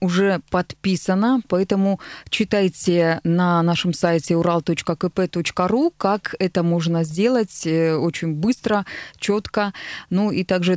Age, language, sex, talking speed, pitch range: 20-39, Russian, female, 100 wpm, 170-210 Hz